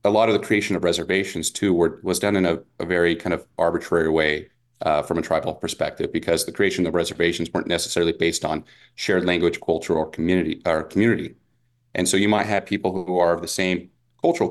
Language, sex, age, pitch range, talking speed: English, male, 30-49, 85-120 Hz, 215 wpm